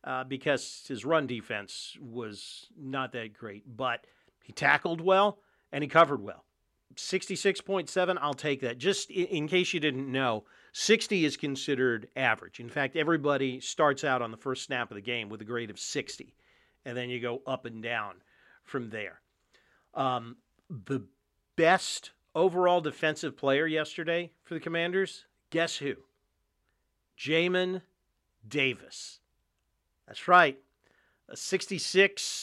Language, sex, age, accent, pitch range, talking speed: English, male, 40-59, American, 125-180 Hz, 140 wpm